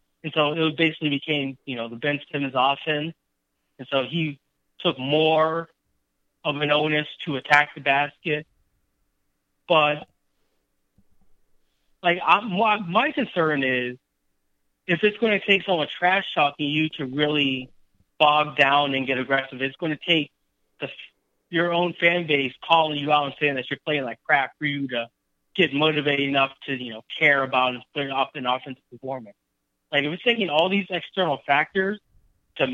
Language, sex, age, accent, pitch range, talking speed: English, male, 20-39, American, 135-170 Hz, 155 wpm